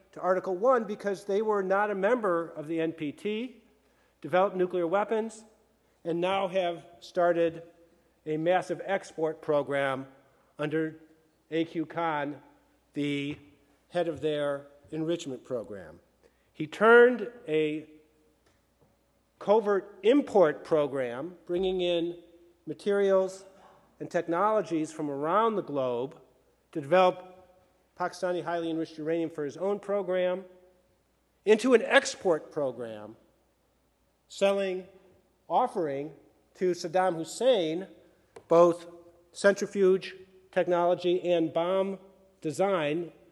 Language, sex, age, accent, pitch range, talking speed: English, male, 50-69, American, 155-190 Hz, 100 wpm